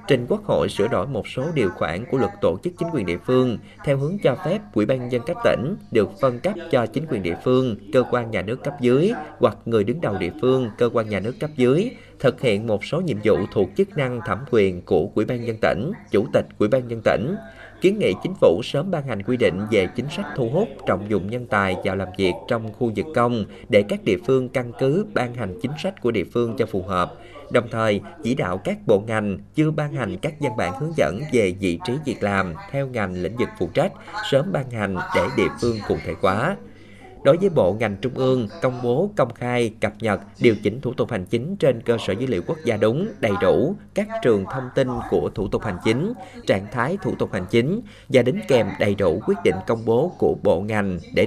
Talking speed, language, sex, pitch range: 240 wpm, Vietnamese, male, 100-130 Hz